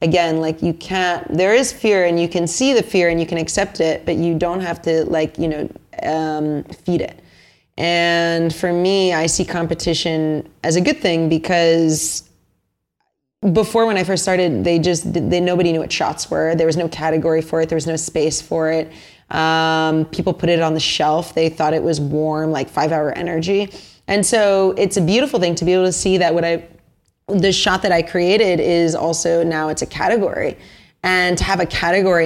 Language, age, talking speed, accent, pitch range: English, 20-39, 205 wpm, American, 160-180 Hz